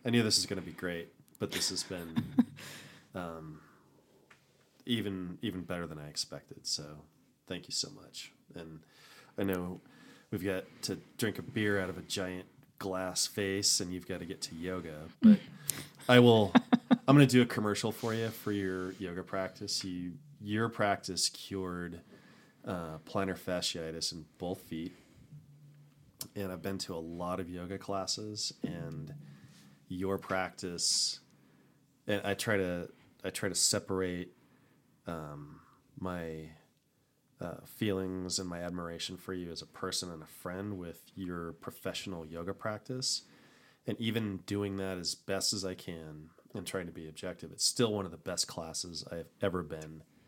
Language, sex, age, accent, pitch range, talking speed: English, male, 20-39, American, 85-105 Hz, 160 wpm